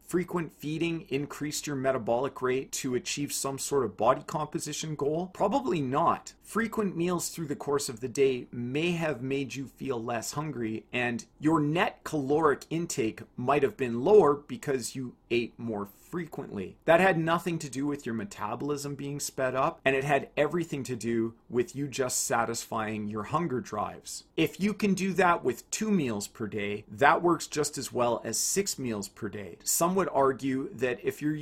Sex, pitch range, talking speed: male, 115-155 Hz, 185 wpm